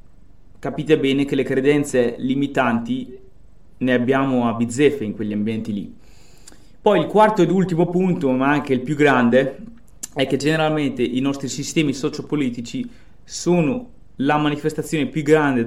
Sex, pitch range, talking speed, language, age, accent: male, 125-155 Hz, 140 wpm, Italian, 20-39, native